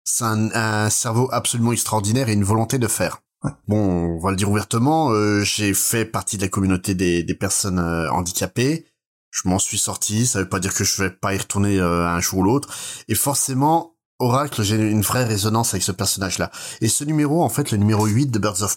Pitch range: 95-120 Hz